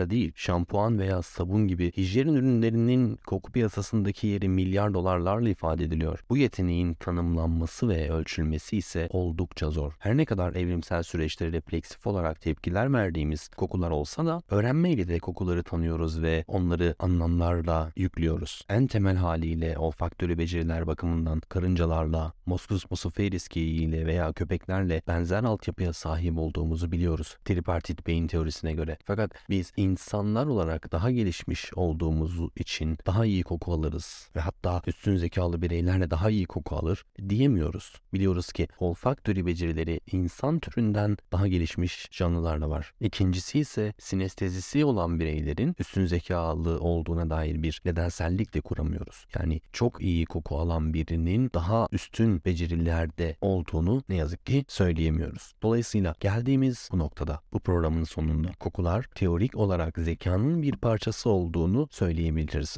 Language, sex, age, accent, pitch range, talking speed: Turkish, male, 30-49, native, 80-100 Hz, 130 wpm